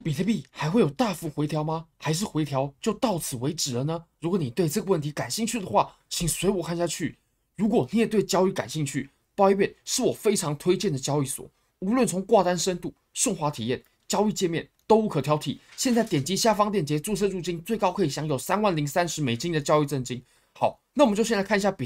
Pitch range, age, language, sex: 140-200 Hz, 20-39, Chinese, male